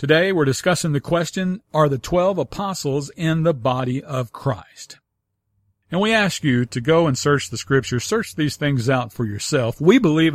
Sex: male